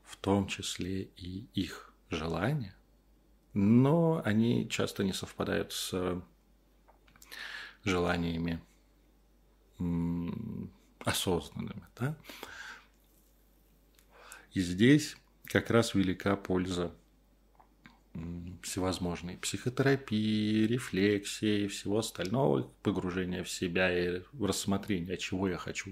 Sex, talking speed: male, 80 wpm